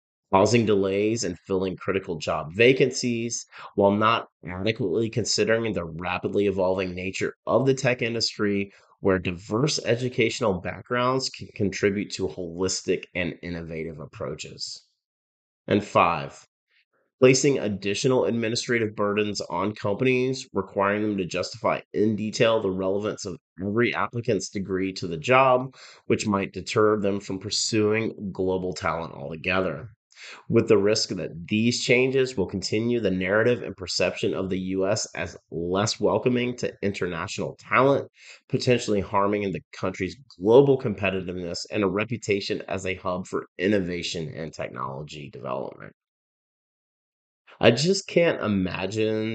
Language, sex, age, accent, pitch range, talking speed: English, male, 30-49, American, 95-115 Hz, 125 wpm